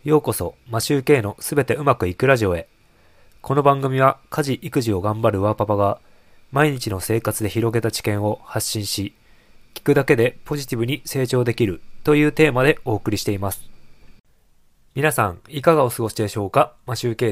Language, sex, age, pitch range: Japanese, male, 20-39, 105-135 Hz